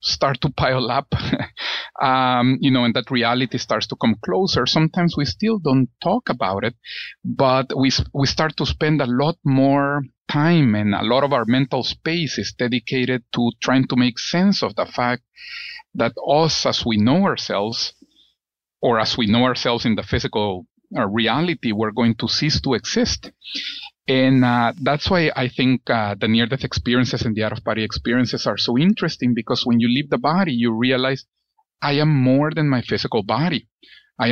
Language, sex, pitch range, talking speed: English, male, 115-145 Hz, 180 wpm